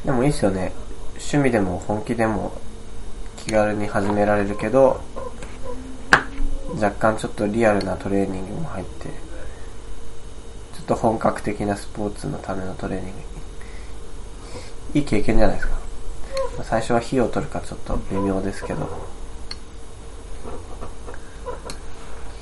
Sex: male